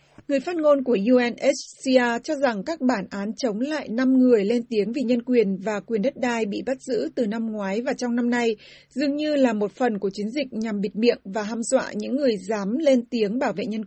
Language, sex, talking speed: Vietnamese, female, 240 wpm